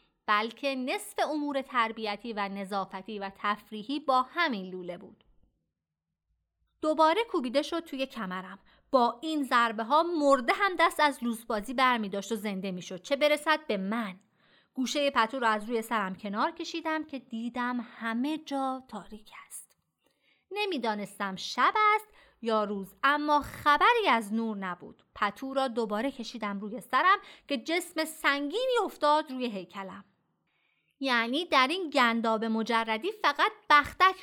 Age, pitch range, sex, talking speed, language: 30-49, 210-310 Hz, female, 140 wpm, Persian